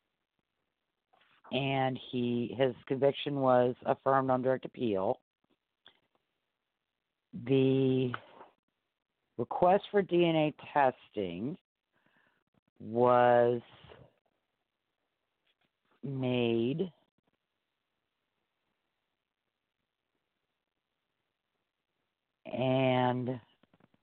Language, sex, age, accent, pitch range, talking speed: English, female, 50-69, American, 125-150 Hz, 40 wpm